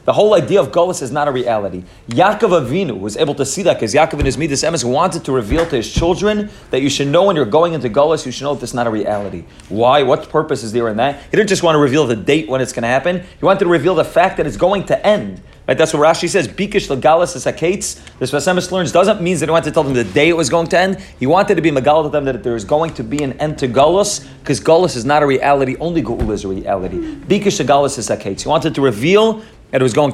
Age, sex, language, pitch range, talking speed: 30-49, male, English, 130-175 Hz, 275 wpm